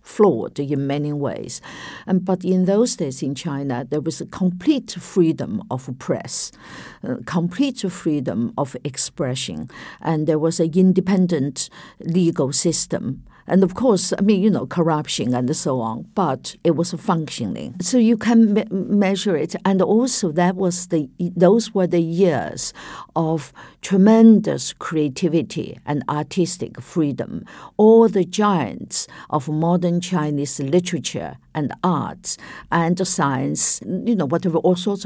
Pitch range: 160-200 Hz